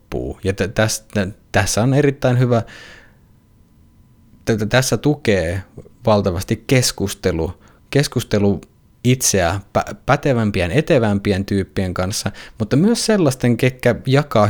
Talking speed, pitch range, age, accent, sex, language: 95 wpm, 95-115 Hz, 20-39, native, male, Finnish